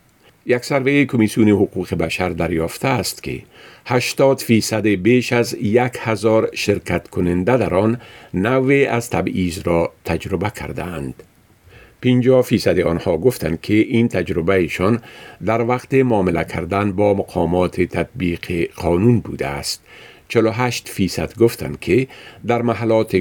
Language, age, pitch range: Persian, 50-69, 90-120 Hz